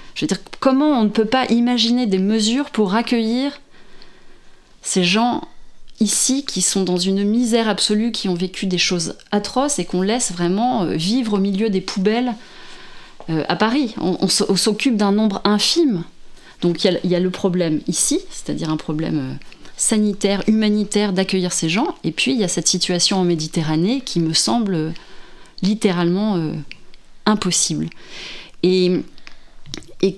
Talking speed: 150 wpm